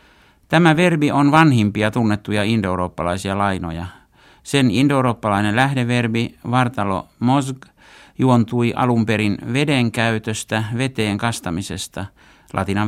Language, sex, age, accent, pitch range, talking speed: Finnish, male, 60-79, native, 100-130 Hz, 95 wpm